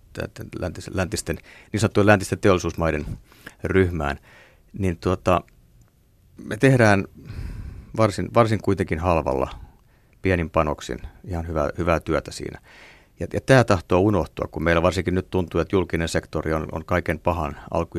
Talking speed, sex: 125 wpm, male